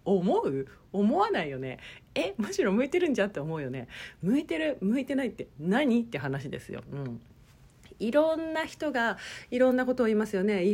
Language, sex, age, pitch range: Japanese, female, 40-59, 165-275 Hz